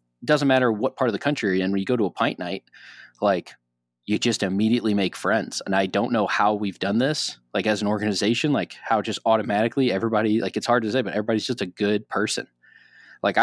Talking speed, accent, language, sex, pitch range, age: 230 wpm, American, English, male, 100-120 Hz, 20-39